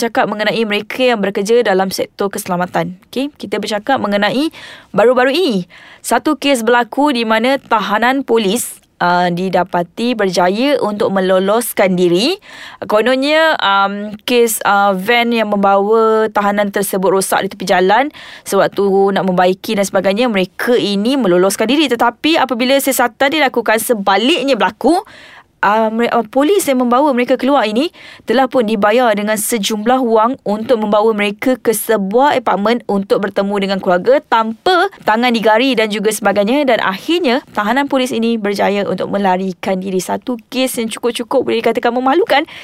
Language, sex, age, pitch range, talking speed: Malay, female, 20-39, 200-260 Hz, 140 wpm